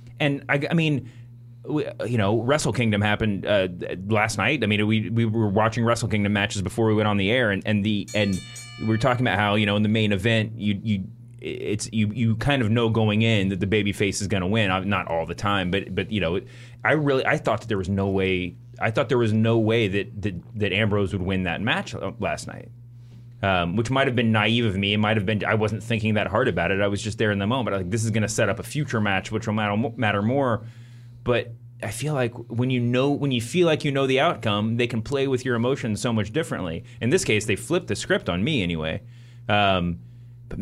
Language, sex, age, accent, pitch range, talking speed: English, male, 30-49, American, 105-120 Hz, 255 wpm